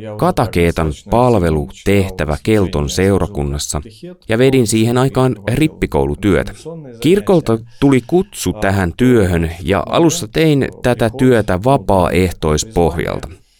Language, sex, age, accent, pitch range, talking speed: Finnish, male, 30-49, native, 90-125 Hz, 90 wpm